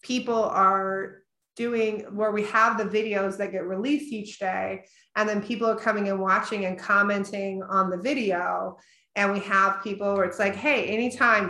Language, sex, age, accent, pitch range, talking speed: English, female, 30-49, American, 185-205 Hz, 175 wpm